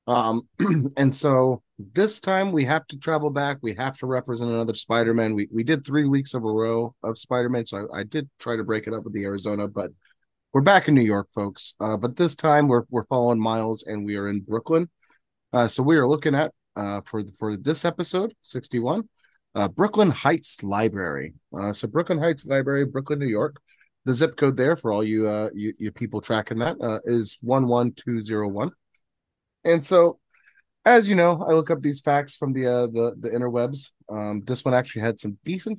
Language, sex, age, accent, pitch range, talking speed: English, male, 30-49, American, 110-155 Hz, 210 wpm